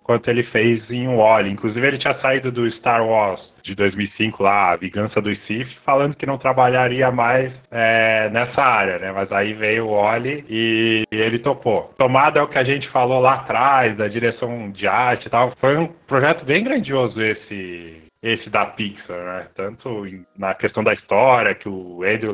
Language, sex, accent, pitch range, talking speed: Portuguese, male, Brazilian, 100-125 Hz, 190 wpm